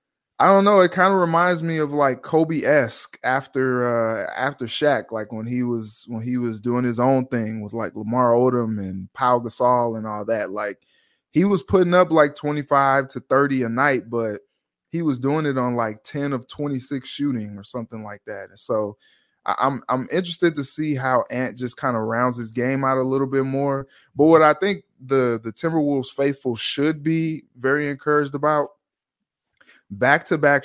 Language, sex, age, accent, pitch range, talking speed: English, male, 20-39, American, 115-140 Hz, 190 wpm